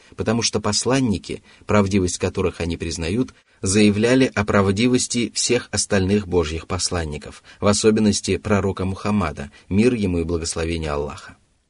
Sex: male